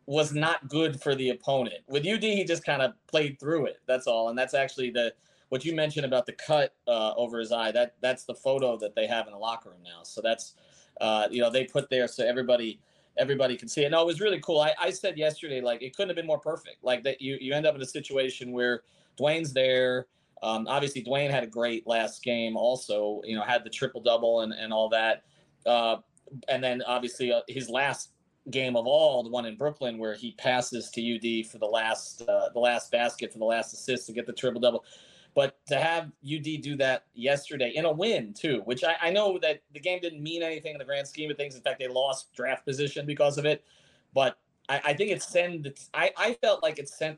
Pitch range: 120-150 Hz